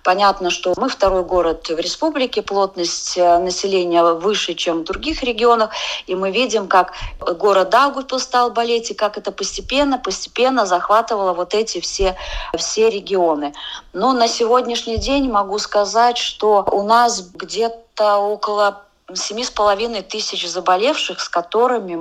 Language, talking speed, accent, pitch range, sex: Russian, 130 wpm, native, 180-230 Hz, female